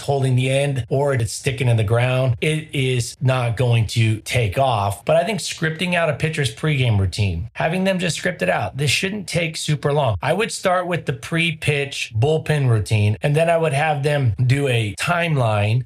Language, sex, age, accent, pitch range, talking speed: English, male, 30-49, American, 115-150 Hz, 205 wpm